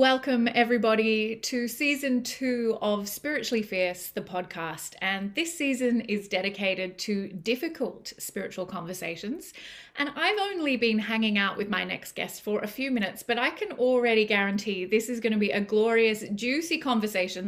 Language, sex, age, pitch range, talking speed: English, female, 30-49, 195-250 Hz, 160 wpm